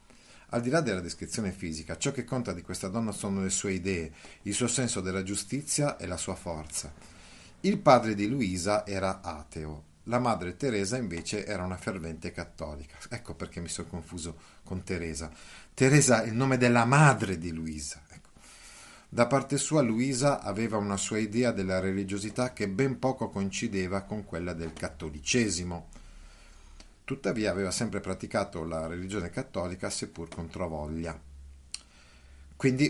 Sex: male